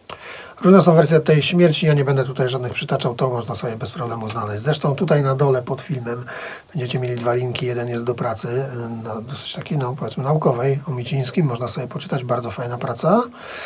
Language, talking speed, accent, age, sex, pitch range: Polish, 200 wpm, native, 40-59, male, 120-160 Hz